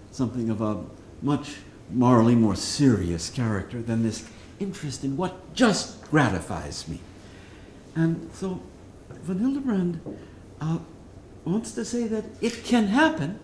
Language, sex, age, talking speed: English, male, 60-79, 125 wpm